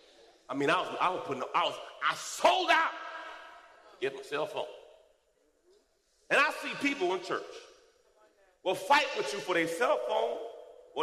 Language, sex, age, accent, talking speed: English, male, 40-59, American, 175 wpm